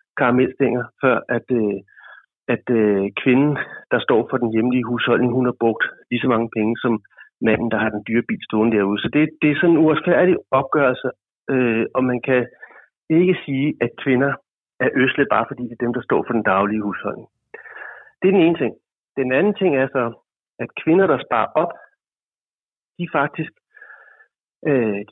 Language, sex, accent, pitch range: Danish, male, native, 125-165 Hz